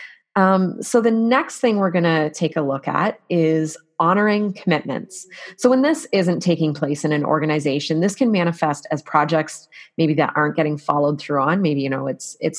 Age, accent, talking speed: 30-49, American, 195 wpm